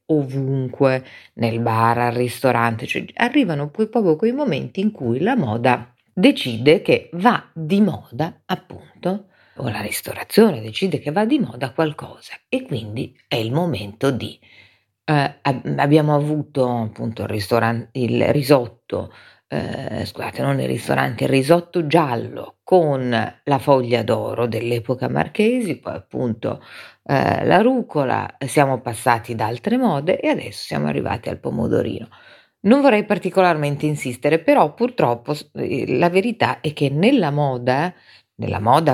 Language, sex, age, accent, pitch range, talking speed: Italian, female, 40-59, native, 120-180 Hz, 135 wpm